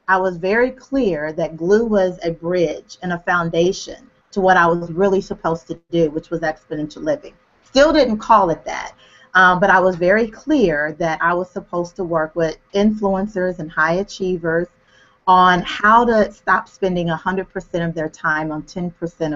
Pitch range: 165-200 Hz